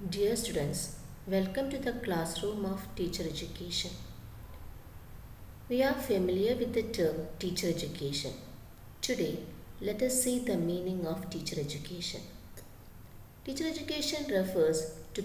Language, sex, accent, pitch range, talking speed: English, female, Indian, 165-250 Hz, 120 wpm